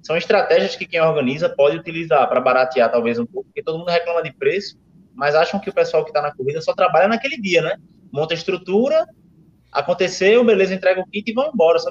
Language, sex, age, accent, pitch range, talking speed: Portuguese, male, 20-39, Brazilian, 140-220 Hz, 220 wpm